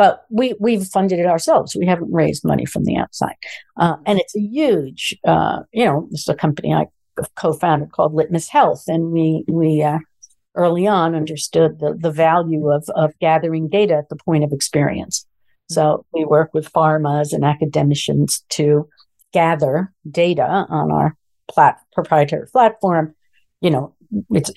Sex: female